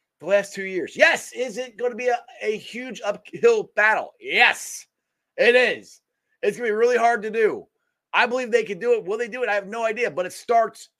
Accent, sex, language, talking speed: American, male, English, 235 wpm